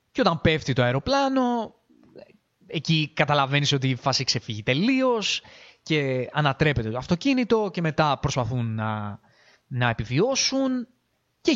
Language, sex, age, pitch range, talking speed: Greek, male, 20-39, 125-165 Hz, 120 wpm